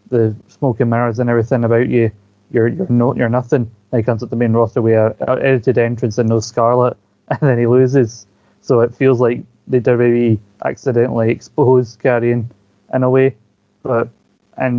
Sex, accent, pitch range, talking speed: male, British, 115-125 Hz, 190 wpm